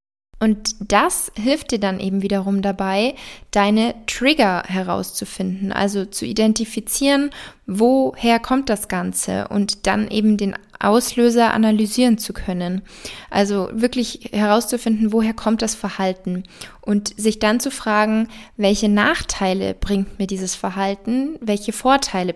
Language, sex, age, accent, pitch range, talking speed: German, female, 20-39, German, 200-235 Hz, 125 wpm